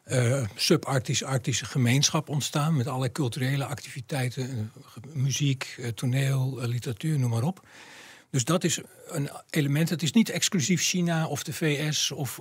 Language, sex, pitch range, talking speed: Dutch, male, 135-170 Hz, 155 wpm